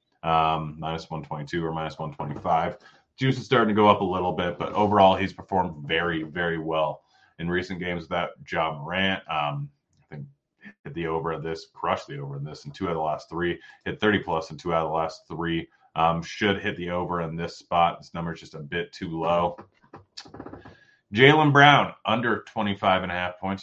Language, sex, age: English, male, 30-49